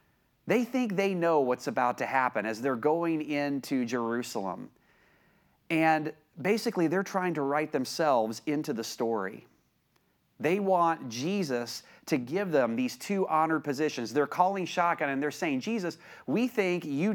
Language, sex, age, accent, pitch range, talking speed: English, male, 30-49, American, 125-175 Hz, 150 wpm